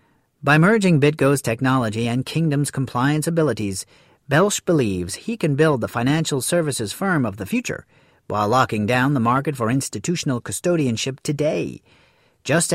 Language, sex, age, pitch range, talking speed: English, male, 40-59, 125-160 Hz, 140 wpm